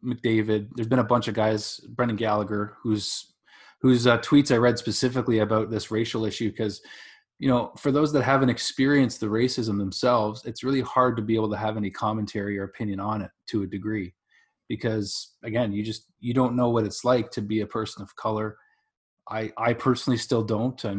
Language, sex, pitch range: English, male, 110-125 Hz